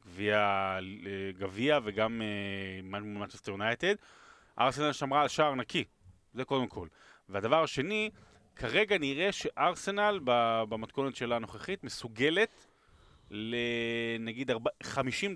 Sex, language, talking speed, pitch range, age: male, Hebrew, 95 wpm, 105-135 Hz, 30-49